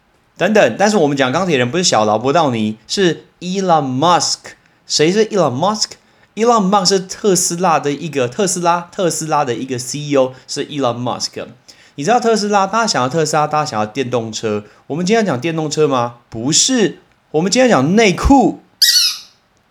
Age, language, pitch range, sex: 30-49, Chinese, 120-185 Hz, male